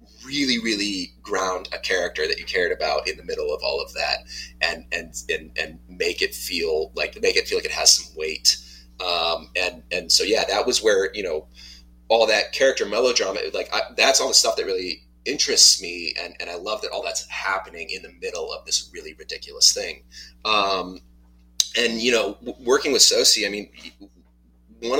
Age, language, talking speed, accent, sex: 30-49, English, 200 wpm, American, male